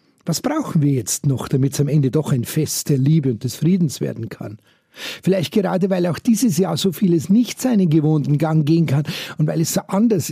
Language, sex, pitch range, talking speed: German, male, 155-190 Hz, 220 wpm